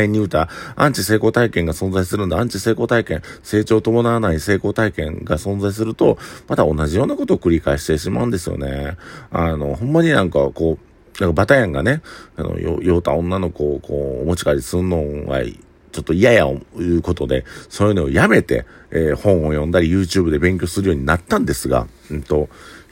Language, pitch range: Japanese, 80-115 Hz